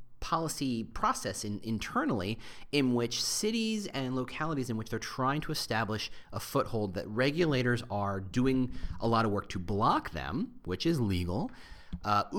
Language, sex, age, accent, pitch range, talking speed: English, male, 30-49, American, 95-125 Hz, 155 wpm